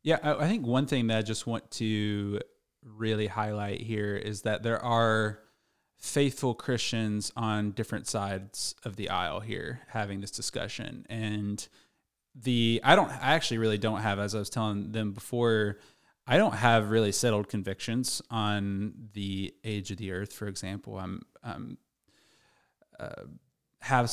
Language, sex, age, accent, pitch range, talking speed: English, male, 20-39, American, 105-125 Hz, 155 wpm